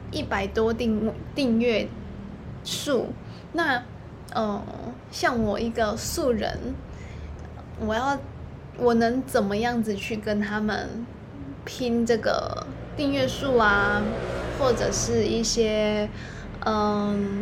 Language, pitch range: Chinese, 210-265 Hz